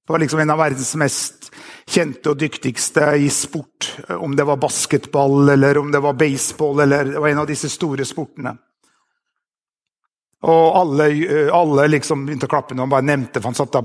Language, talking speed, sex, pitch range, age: English, 180 wpm, male, 135-160 Hz, 50-69